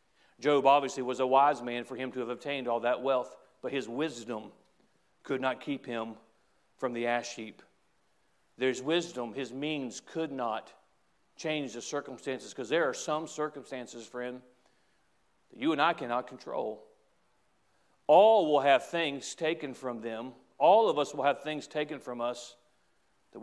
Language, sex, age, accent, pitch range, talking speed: English, male, 40-59, American, 130-175 Hz, 160 wpm